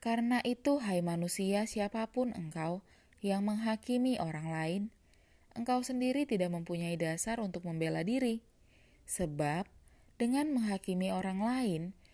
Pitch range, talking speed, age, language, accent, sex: 180-245 Hz, 115 wpm, 20-39, Indonesian, native, female